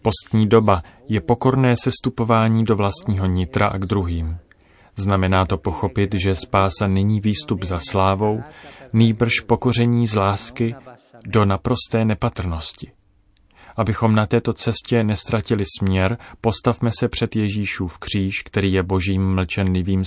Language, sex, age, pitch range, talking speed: Czech, male, 30-49, 95-110 Hz, 130 wpm